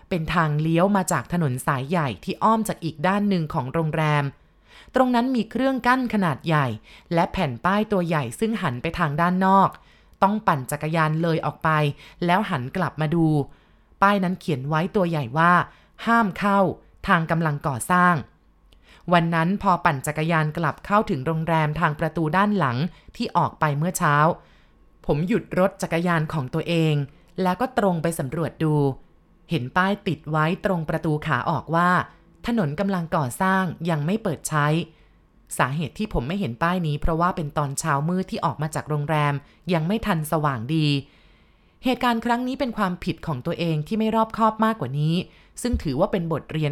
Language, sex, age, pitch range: Thai, female, 20-39, 150-190 Hz